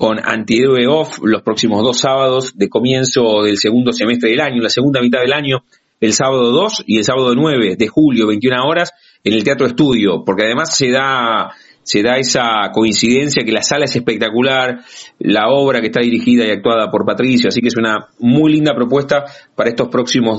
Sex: male